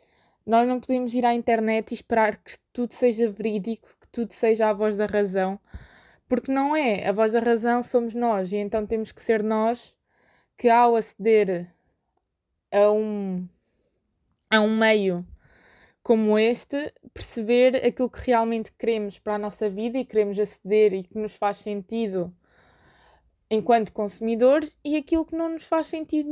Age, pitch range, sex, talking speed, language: 20-39, 215-245 Hz, female, 155 wpm, Portuguese